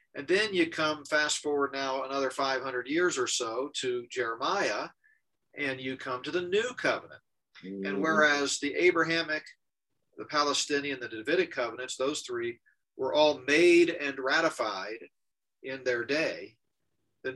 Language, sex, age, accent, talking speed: English, male, 50-69, American, 140 wpm